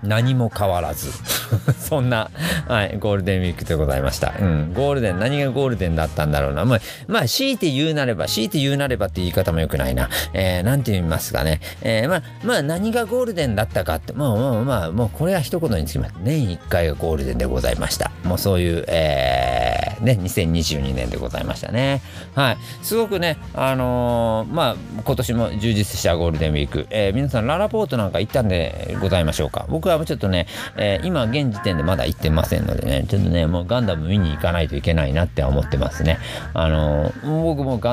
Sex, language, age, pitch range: male, Japanese, 40-59, 80-120 Hz